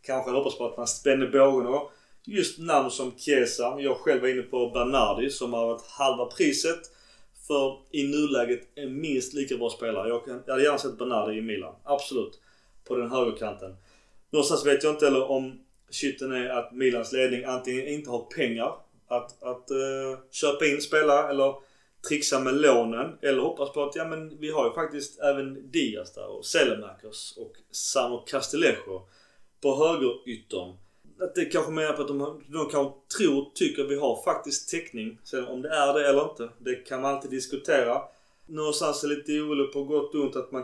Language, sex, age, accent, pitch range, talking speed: Swedish, male, 30-49, native, 125-145 Hz, 190 wpm